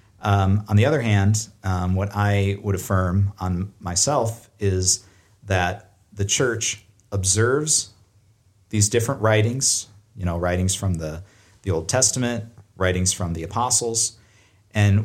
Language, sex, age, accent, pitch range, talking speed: English, male, 40-59, American, 95-110 Hz, 125 wpm